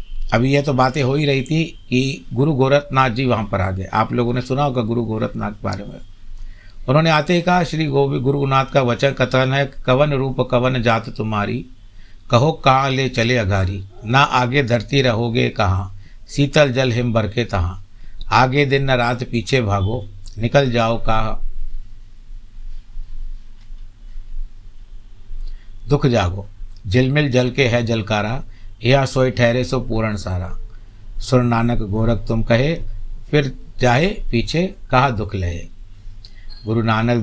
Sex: male